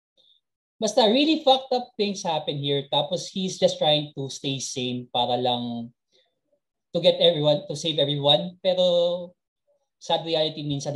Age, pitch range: 20-39, 135-190 Hz